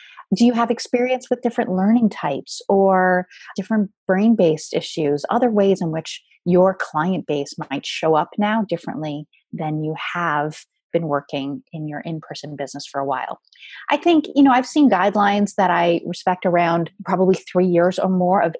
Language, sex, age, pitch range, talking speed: English, female, 30-49, 160-220 Hz, 170 wpm